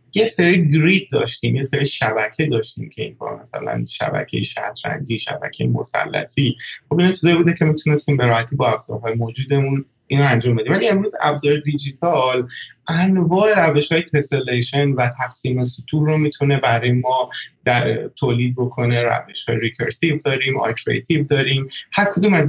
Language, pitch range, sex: Persian, 120-150 Hz, male